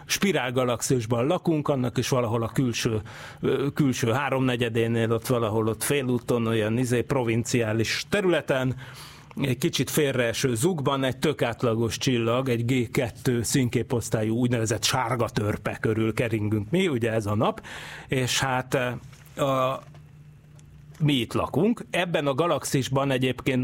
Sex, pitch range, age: male, 115-145 Hz, 30-49